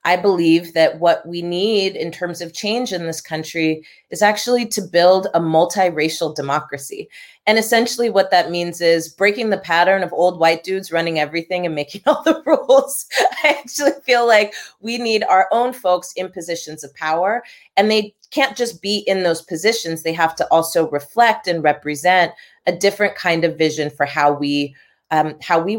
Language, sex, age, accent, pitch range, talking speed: English, female, 30-49, American, 160-215 Hz, 180 wpm